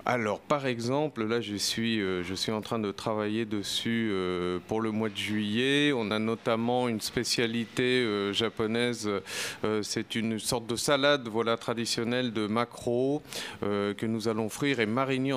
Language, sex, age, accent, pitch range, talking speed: French, male, 40-59, French, 100-120 Hz, 170 wpm